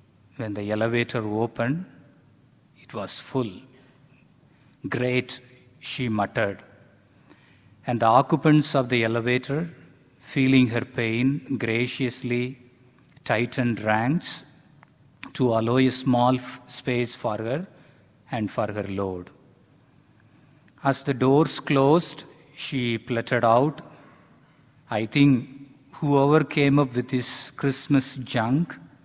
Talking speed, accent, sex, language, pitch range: 100 wpm, Indian, male, English, 115-140 Hz